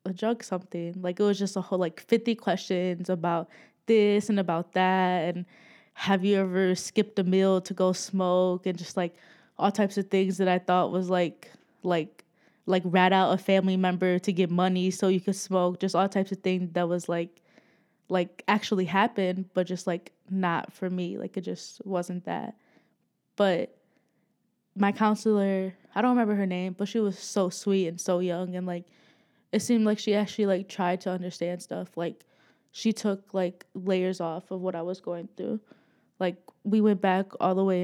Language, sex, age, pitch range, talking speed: English, female, 20-39, 175-195 Hz, 195 wpm